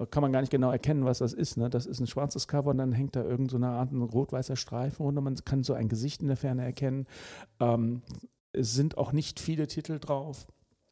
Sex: male